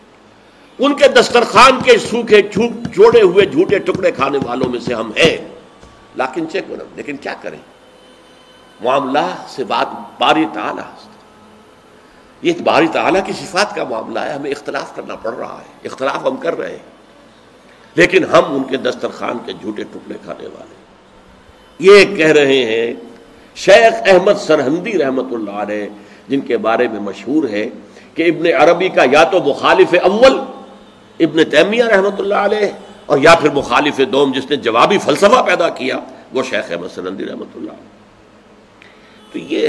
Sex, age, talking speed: male, 60-79, 155 wpm